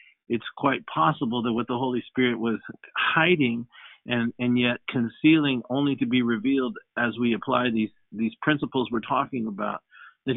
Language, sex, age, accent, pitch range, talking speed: English, male, 50-69, American, 110-135 Hz, 160 wpm